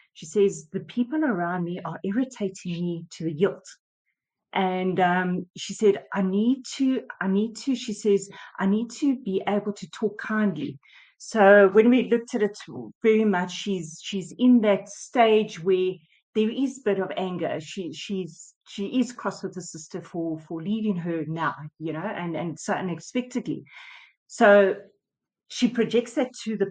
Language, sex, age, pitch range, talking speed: English, female, 40-59, 180-225 Hz, 175 wpm